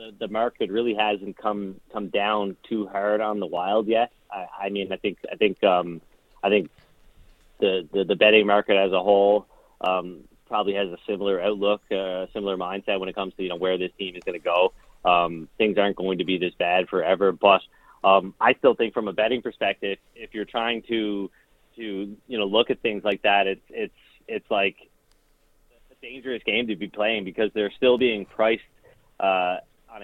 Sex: male